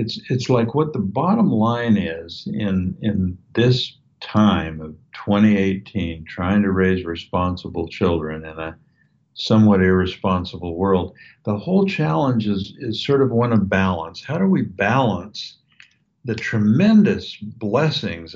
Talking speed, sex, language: 135 wpm, male, English